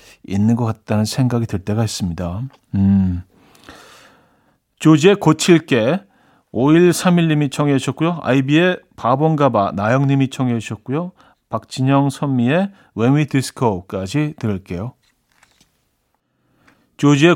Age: 40-59